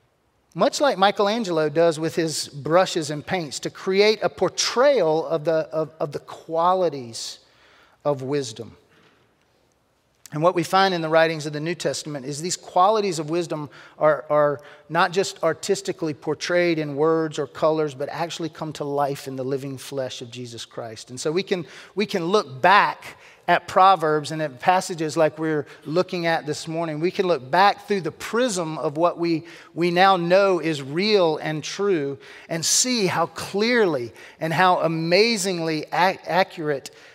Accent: American